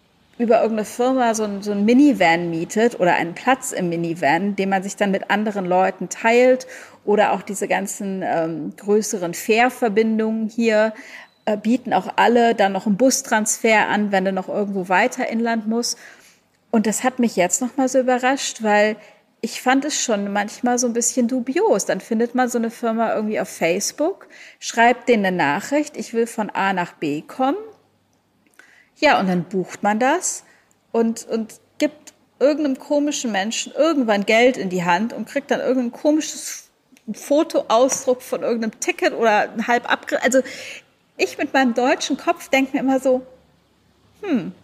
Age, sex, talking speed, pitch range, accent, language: 40-59, female, 170 wpm, 205-265 Hz, German, German